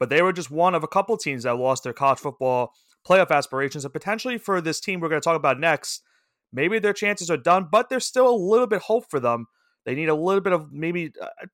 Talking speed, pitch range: 260 wpm, 135-185 Hz